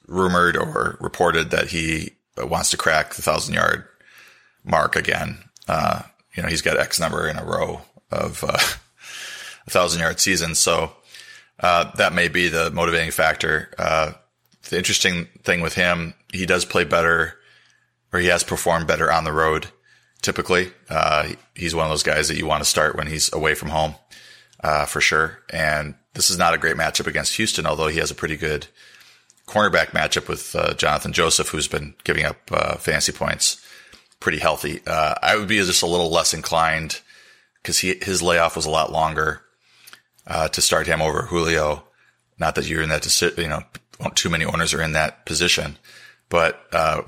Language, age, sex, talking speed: English, 30-49, male, 185 wpm